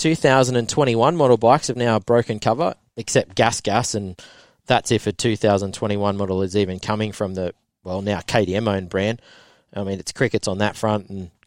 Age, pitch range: 20-39, 105-125 Hz